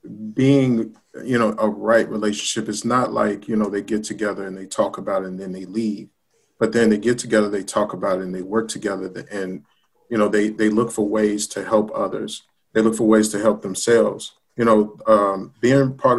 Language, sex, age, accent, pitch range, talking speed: English, male, 40-59, American, 105-115 Hz, 220 wpm